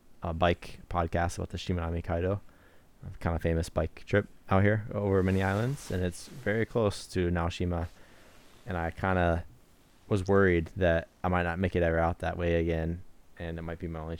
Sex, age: male, 20-39